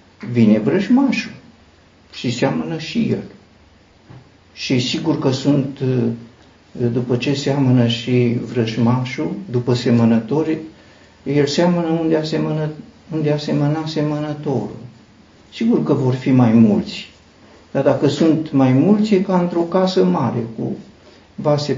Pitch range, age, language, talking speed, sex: 120-160 Hz, 60-79, Romanian, 115 wpm, male